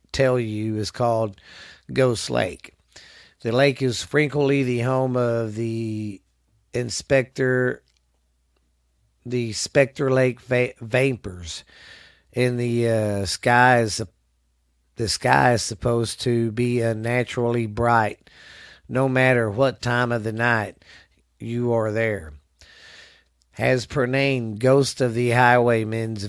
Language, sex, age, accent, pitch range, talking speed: English, male, 40-59, American, 105-125 Hz, 115 wpm